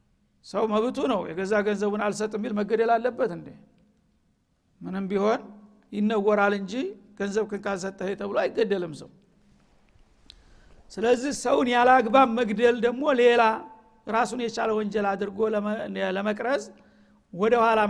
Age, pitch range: 60-79, 205-235 Hz